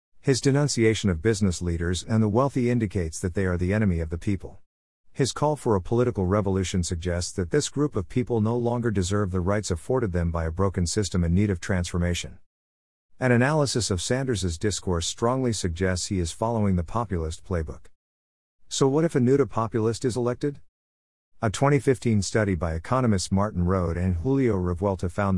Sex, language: male, English